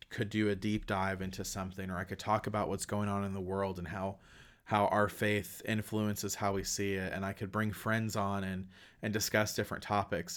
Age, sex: 30-49, male